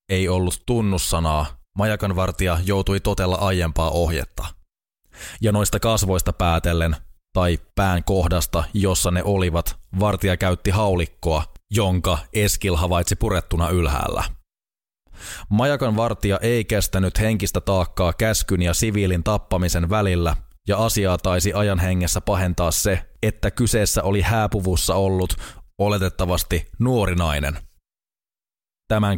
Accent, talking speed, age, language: native, 105 wpm, 20-39, Finnish